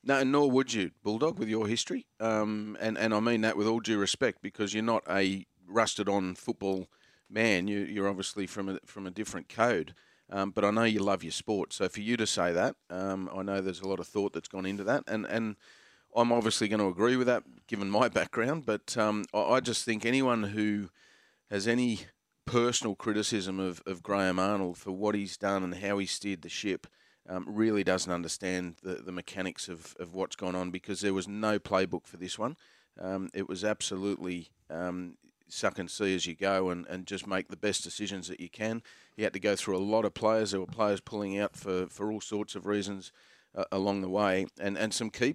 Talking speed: 220 wpm